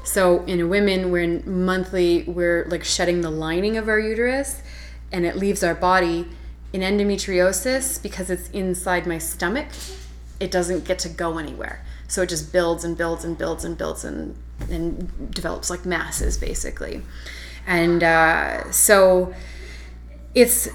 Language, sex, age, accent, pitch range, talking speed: English, female, 20-39, American, 170-230 Hz, 150 wpm